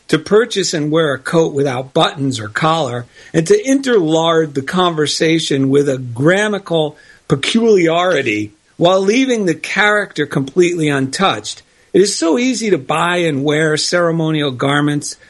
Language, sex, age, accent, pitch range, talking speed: English, male, 50-69, American, 150-195 Hz, 135 wpm